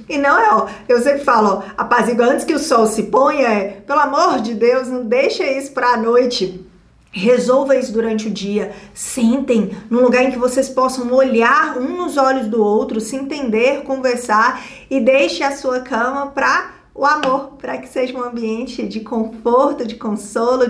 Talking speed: 185 wpm